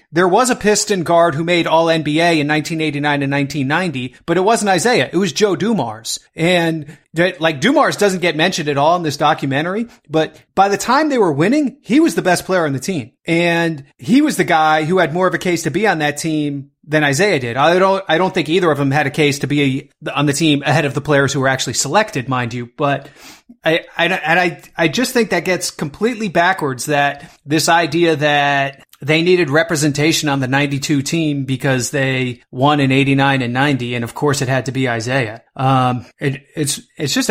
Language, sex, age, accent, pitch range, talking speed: English, male, 30-49, American, 140-175 Hz, 215 wpm